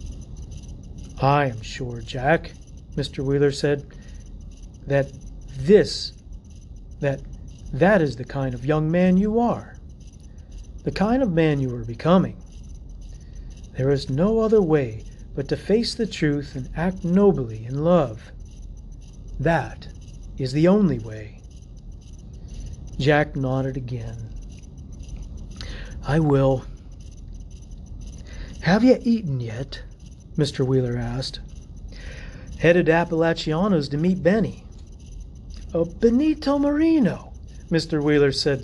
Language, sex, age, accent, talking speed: English, male, 50-69, American, 105 wpm